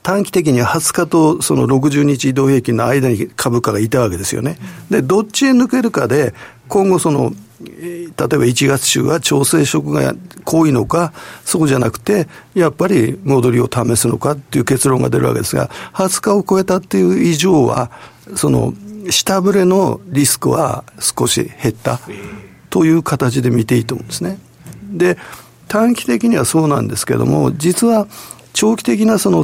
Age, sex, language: 50-69, male, Japanese